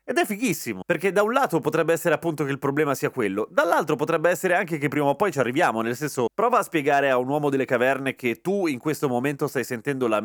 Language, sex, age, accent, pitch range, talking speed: Italian, male, 30-49, native, 140-195 Hz, 250 wpm